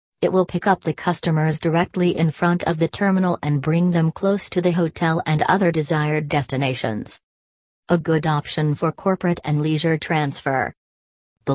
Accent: American